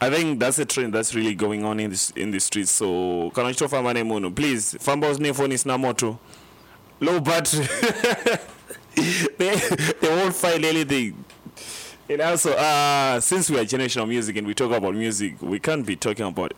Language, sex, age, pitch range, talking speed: English, male, 20-39, 110-145 Hz, 190 wpm